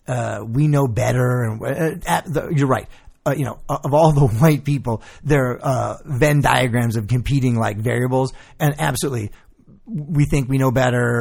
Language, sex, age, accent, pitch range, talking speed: English, male, 30-49, American, 115-145 Hz, 180 wpm